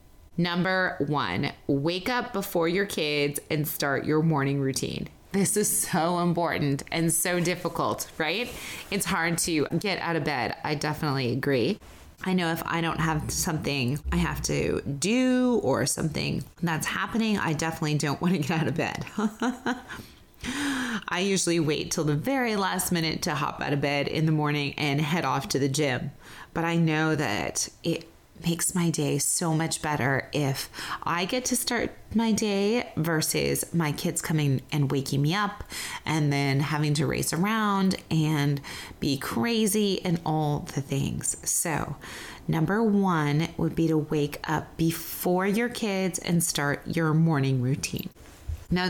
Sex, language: female, English